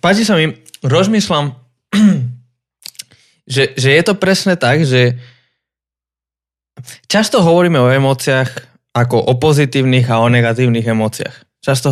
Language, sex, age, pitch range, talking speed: Slovak, male, 20-39, 120-150 Hz, 115 wpm